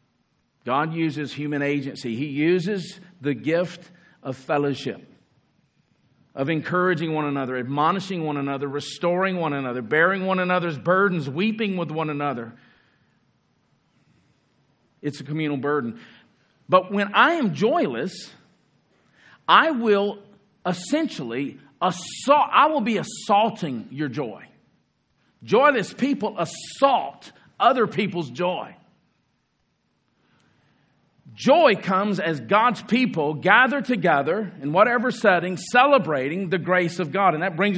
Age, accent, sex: 50-69, American, male